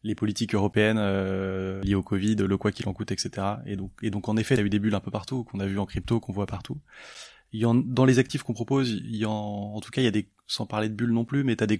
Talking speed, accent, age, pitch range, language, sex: 310 wpm, French, 20-39, 105-120 Hz, French, male